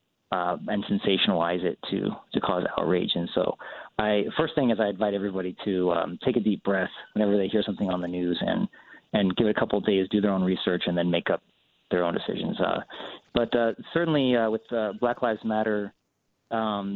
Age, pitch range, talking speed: 30-49, 100-125 Hz, 210 wpm